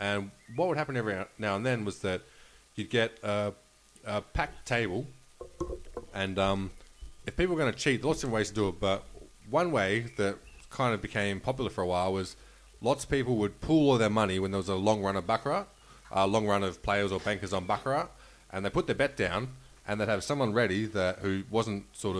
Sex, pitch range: male, 100-130 Hz